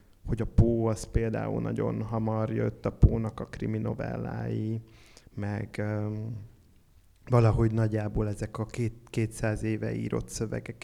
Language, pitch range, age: Hungarian, 105-125 Hz, 30-49